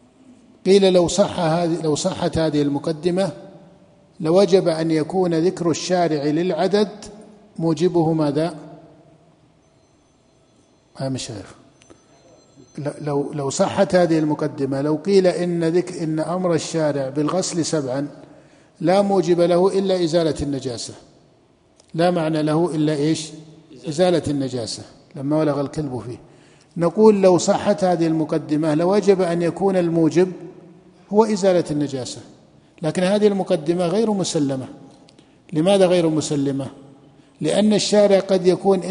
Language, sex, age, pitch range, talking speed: Arabic, male, 50-69, 150-185 Hz, 115 wpm